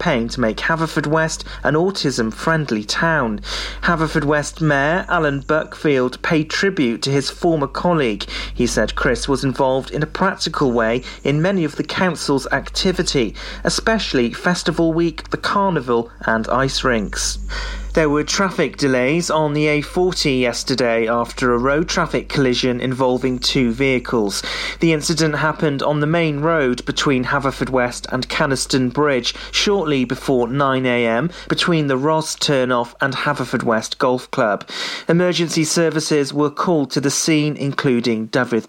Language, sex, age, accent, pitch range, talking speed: English, male, 30-49, British, 130-165 Hz, 140 wpm